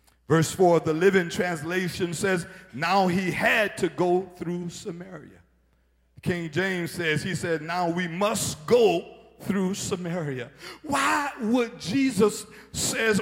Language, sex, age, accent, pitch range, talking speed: English, male, 50-69, American, 180-245 Hz, 125 wpm